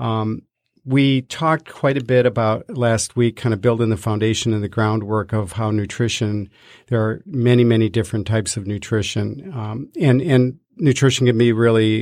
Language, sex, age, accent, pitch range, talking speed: English, male, 50-69, American, 110-125 Hz, 175 wpm